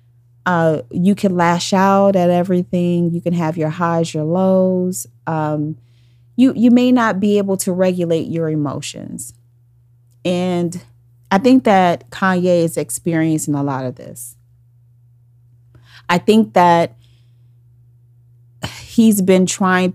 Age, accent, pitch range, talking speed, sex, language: 40-59, American, 125-180 Hz, 125 wpm, female, English